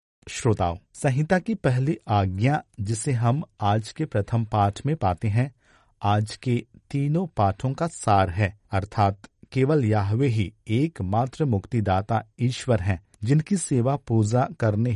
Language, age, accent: Hindi, 50-69, native